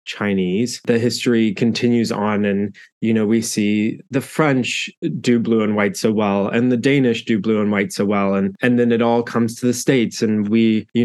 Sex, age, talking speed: male, 20-39, 210 wpm